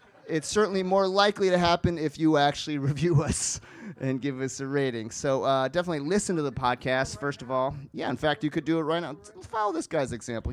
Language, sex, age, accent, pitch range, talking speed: English, male, 30-49, American, 120-155 Hz, 220 wpm